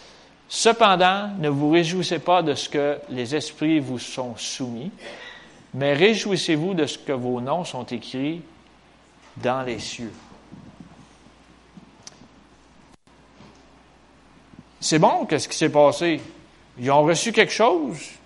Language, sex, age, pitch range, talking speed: French, male, 40-59, 130-180 Hz, 120 wpm